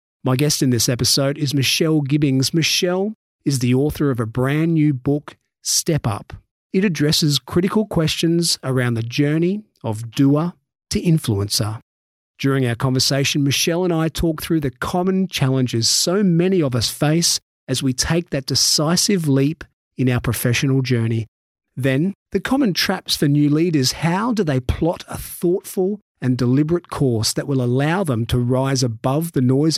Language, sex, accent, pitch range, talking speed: English, male, Australian, 125-165 Hz, 165 wpm